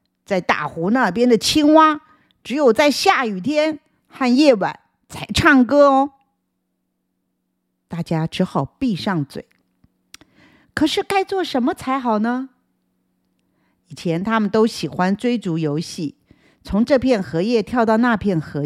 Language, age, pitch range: Chinese, 50-69, 165-280 Hz